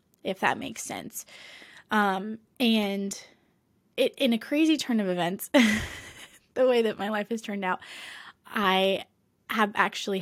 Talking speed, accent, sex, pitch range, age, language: 140 wpm, American, female, 185-215 Hz, 10-29, English